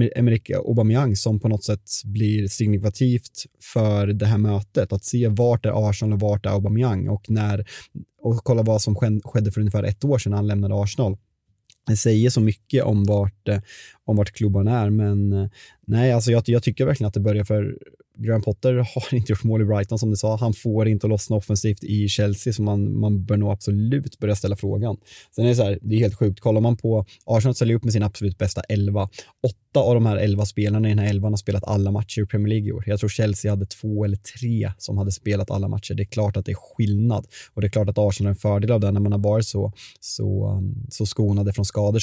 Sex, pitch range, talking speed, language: male, 100-115 Hz, 235 wpm, Swedish